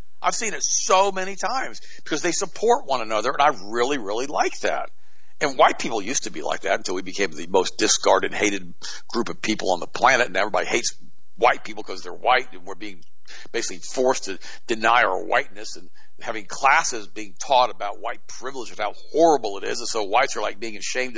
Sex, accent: male, American